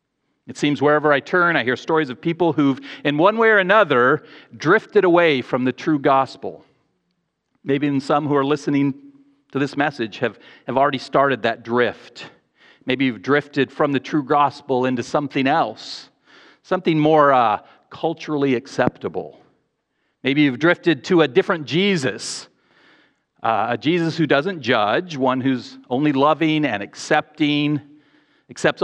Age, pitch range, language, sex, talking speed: 40-59, 135-165 Hz, English, male, 150 wpm